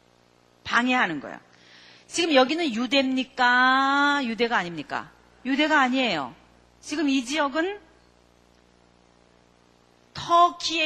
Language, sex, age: Korean, female, 40-59